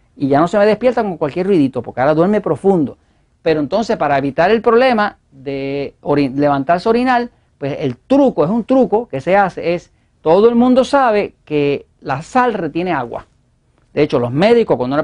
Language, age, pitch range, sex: Spanish, 40-59, 140-225 Hz, male